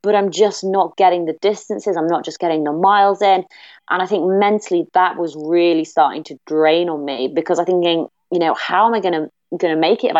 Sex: female